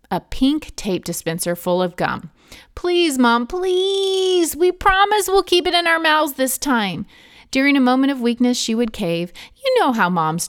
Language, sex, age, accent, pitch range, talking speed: English, female, 30-49, American, 200-280 Hz, 185 wpm